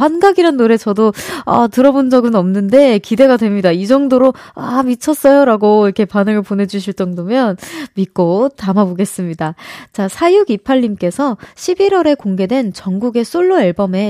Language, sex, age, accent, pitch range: Korean, female, 20-39, native, 200-280 Hz